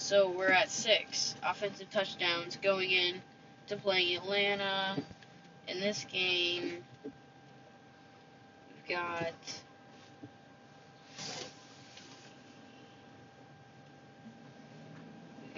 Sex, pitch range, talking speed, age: female, 160-200 Hz, 65 wpm, 20-39